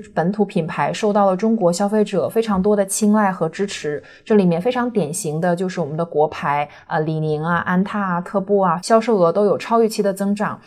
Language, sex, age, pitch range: Chinese, female, 20-39, 175-215 Hz